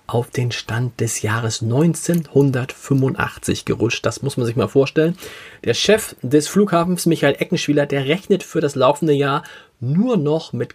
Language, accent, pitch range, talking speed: German, German, 125-165 Hz, 155 wpm